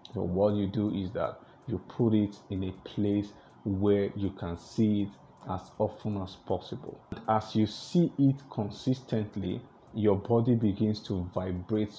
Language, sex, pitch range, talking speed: English, male, 95-110 Hz, 155 wpm